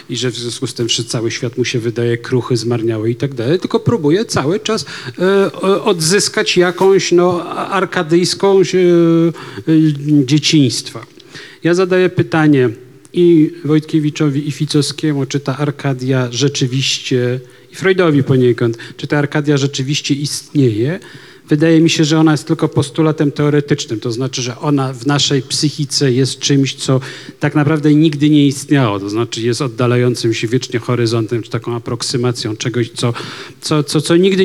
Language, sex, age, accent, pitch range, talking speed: Polish, male, 40-59, native, 130-160 Hz, 155 wpm